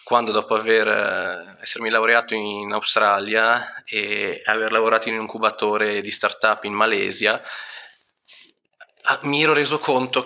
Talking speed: 130 wpm